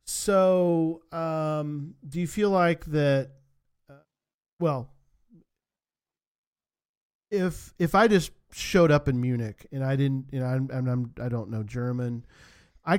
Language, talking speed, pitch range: English, 135 wpm, 120-145 Hz